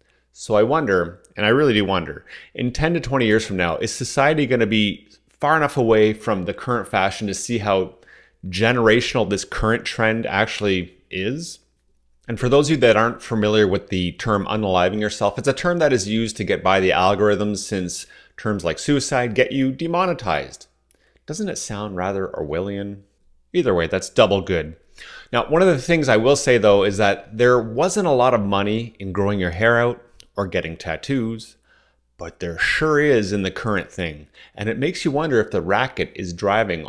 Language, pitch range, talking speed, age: English, 95-125 Hz, 195 wpm, 30-49